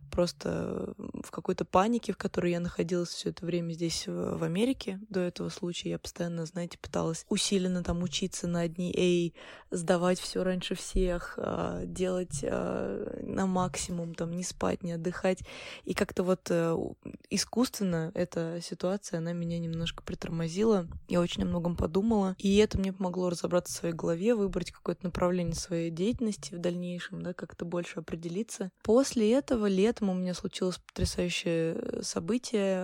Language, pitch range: Russian, 170-195 Hz